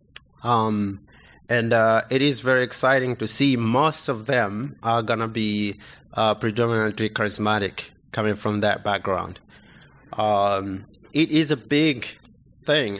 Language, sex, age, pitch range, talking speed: English, male, 30-49, 110-140 Hz, 135 wpm